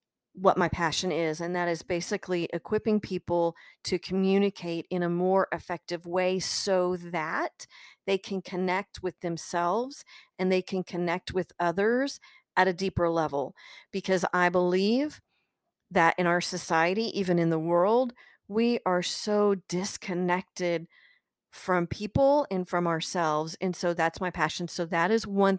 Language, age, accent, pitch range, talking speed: English, 40-59, American, 175-195 Hz, 150 wpm